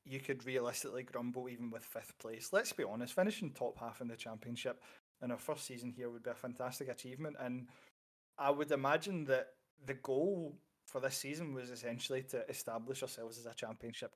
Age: 20-39